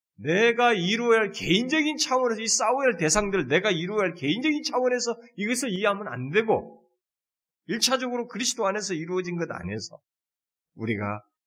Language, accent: Korean, native